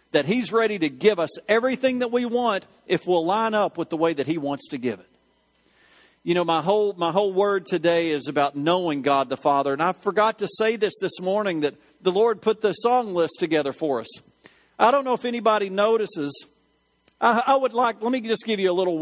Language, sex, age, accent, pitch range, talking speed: English, male, 40-59, American, 150-220 Hz, 225 wpm